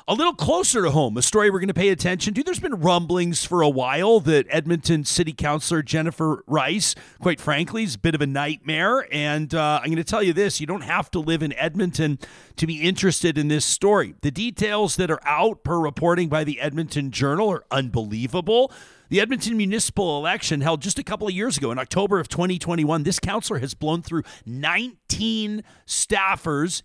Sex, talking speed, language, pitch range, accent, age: male, 200 wpm, English, 150-195 Hz, American, 40-59